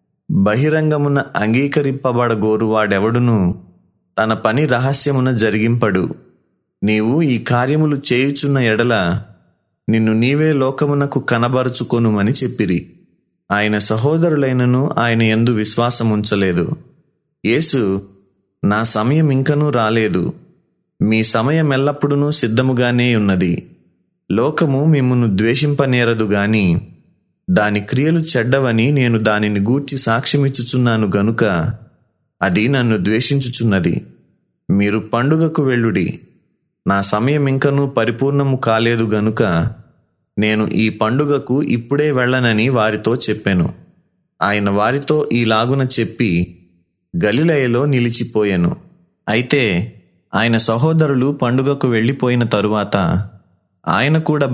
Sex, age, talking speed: male, 30-49, 85 wpm